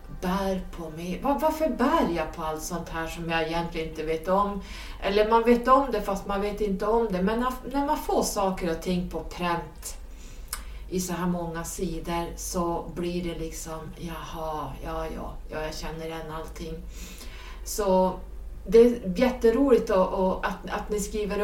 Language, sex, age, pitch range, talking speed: Swedish, female, 30-49, 160-205 Hz, 175 wpm